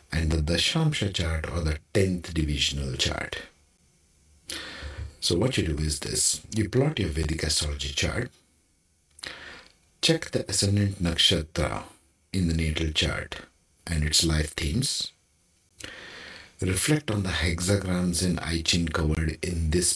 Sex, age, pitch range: male, 50-69, 80-100 Hz